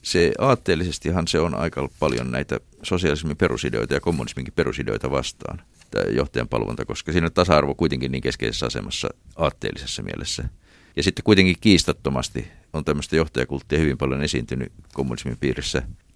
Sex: male